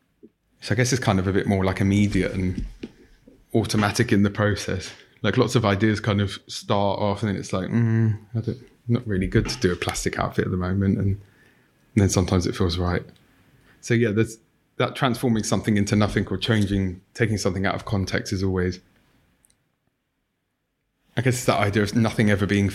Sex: male